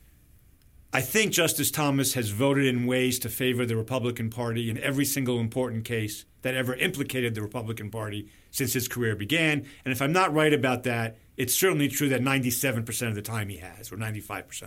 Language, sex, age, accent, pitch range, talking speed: English, male, 50-69, American, 105-135 Hz, 195 wpm